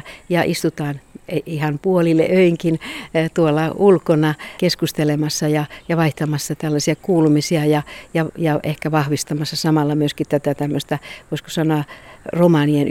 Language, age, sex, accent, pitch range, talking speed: Finnish, 60-79, female, native, 150-175 Hz, 115 wpm